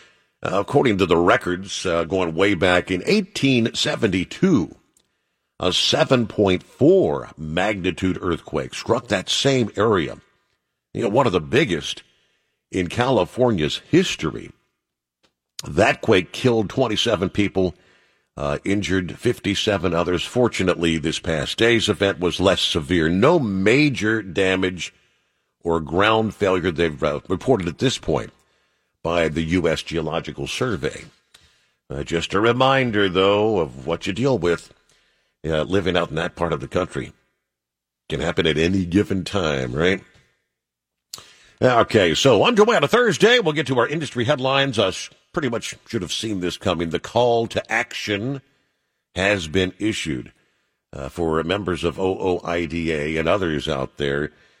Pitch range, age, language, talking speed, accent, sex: 85-110 Hz, 50-69, English, 135 wpm, American, male